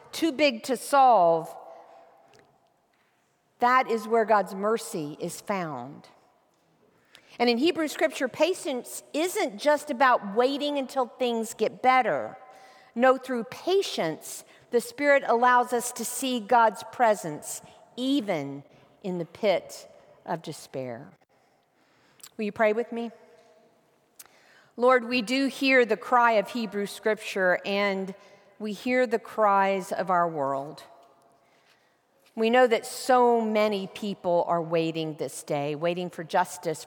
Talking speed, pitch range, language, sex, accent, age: 125 wpm, 170-250 Hz, English, female, American, 50-69